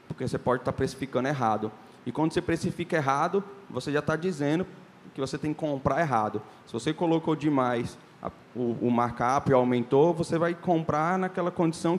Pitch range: 135-180 Hz